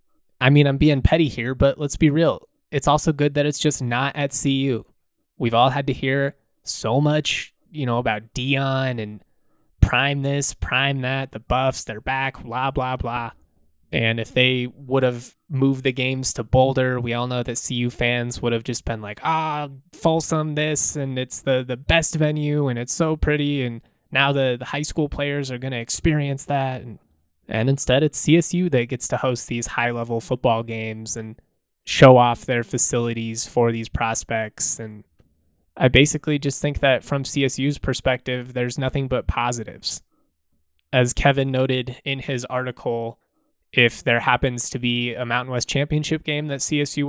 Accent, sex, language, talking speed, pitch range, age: American, male, English, 180 wpm, 120-140 Hz, 20-39